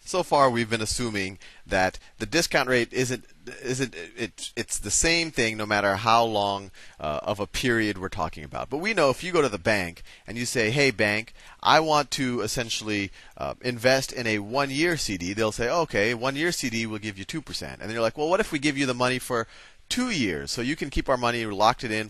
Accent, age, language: American, 30-49, English